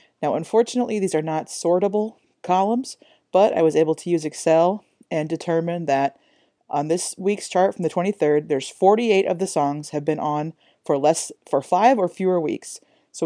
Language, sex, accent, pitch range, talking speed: English, female, American, 155-200 Hz, 180 wpm